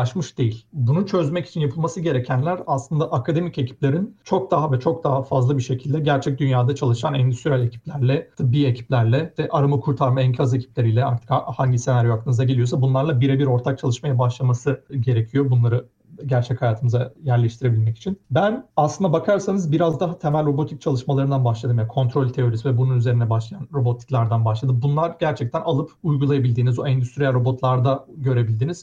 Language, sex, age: Turkish, male, 40-59